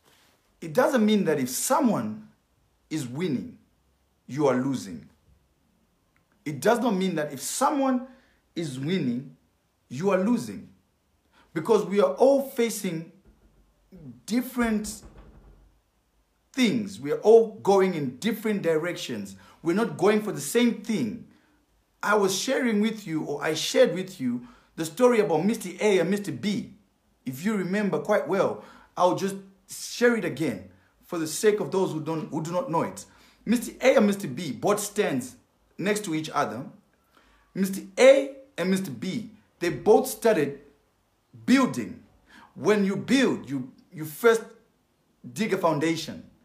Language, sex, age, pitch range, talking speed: English, male, 50-69, 170-235 Hz, 145 wpm